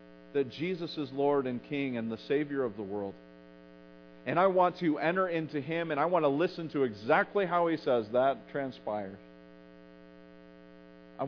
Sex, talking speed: male, 170 wpm